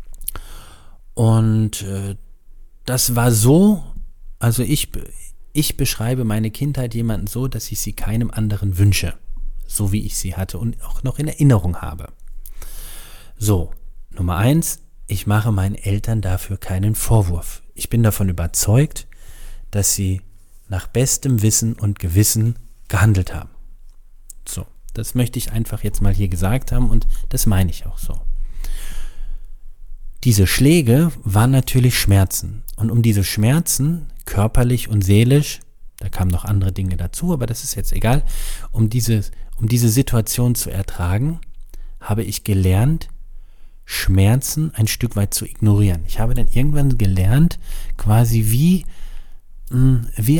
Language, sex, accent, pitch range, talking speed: German, male, German, 95-125 Hz, 135 wpm